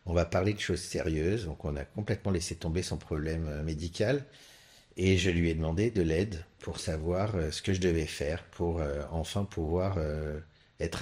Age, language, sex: 50-69, French, male